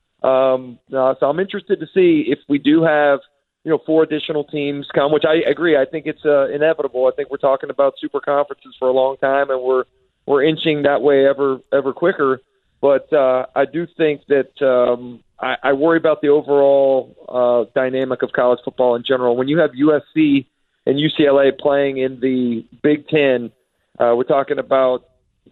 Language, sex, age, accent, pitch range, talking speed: English, male, 40-59, American, 130-150 Hz, 190 wpm